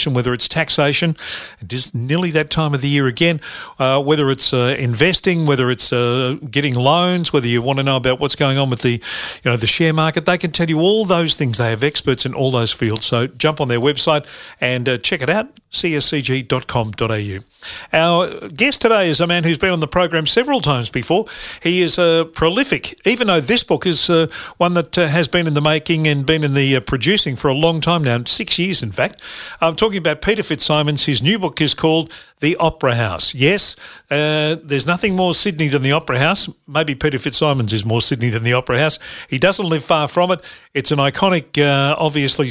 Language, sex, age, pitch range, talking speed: English, male, 40-59, 135-170 Hz, 215 wpm